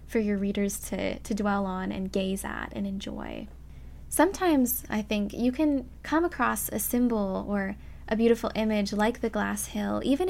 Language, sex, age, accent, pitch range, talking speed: English, female, 10-29, American, 200-255 Hz, 175 wpm